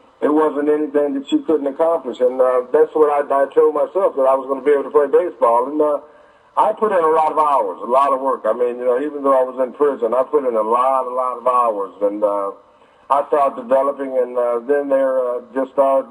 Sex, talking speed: male, 255 wpm